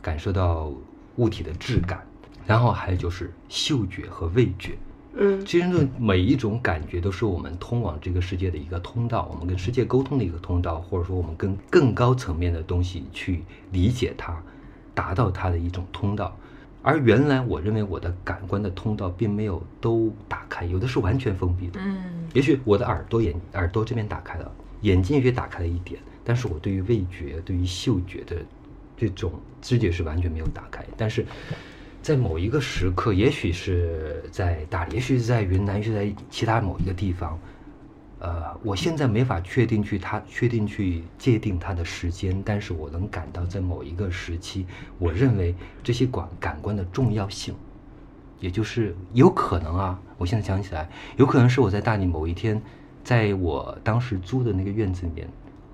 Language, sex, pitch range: Chinese, male, 90-115 Hz